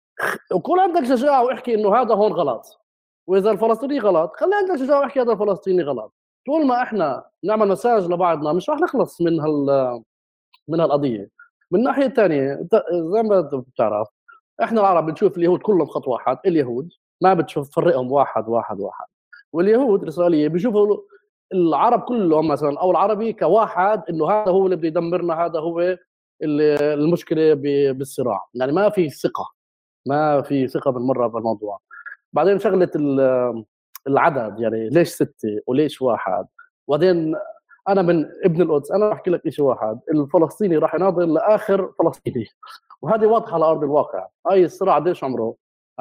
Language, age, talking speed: Arabic, 30-49, 145 wpm